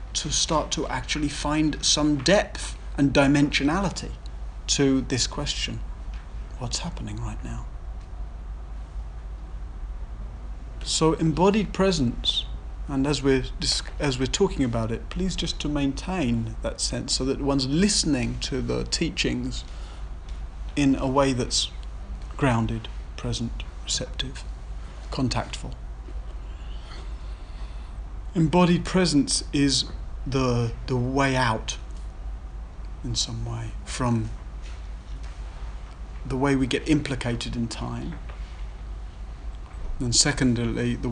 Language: English